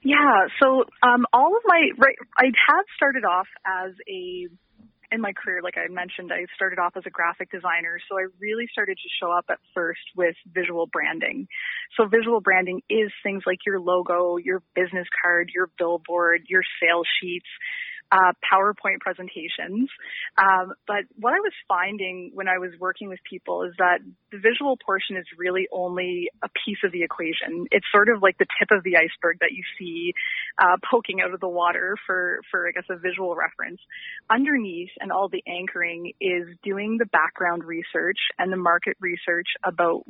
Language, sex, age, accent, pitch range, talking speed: English, female, 30-49, American, 175-225 Hz, 185 wpm